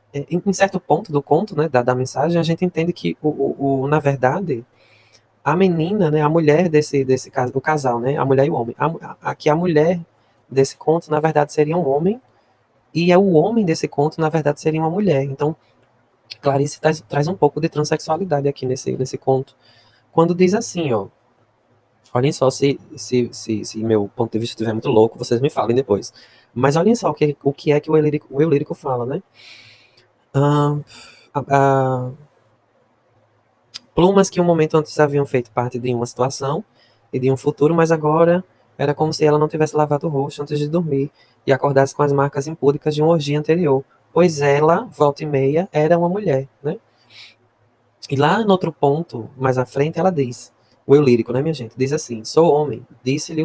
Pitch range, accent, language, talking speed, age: 130-155 Hz, Brazilian, Portuguese, 190 wpm, 20-39